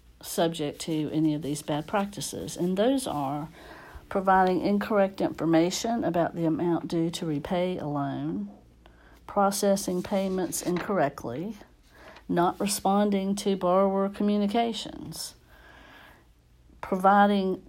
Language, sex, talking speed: English, female, 100 wpm